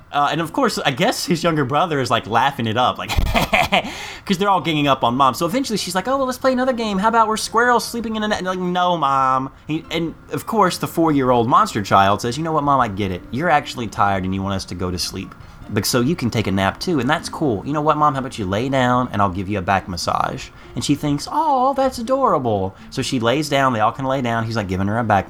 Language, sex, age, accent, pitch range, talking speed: English, male, 20-39, American, 105-170 Hz, 285 wpm